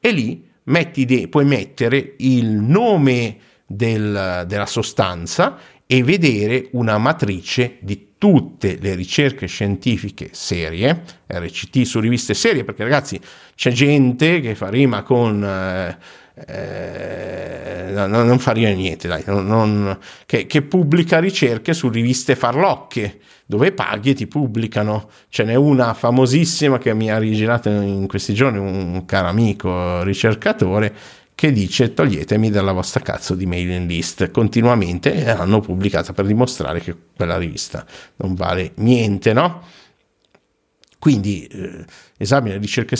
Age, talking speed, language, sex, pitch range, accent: 50-69, 130 wpm, Italian, male, 100-130 Hz, native